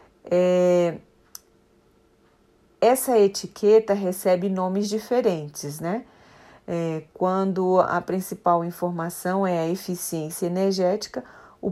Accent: Brazilian